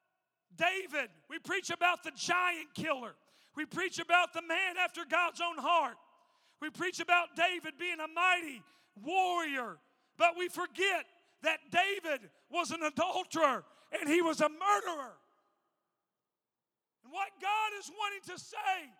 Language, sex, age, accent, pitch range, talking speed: English, male, 40-59, American, 310-360 Hz, 140 wpm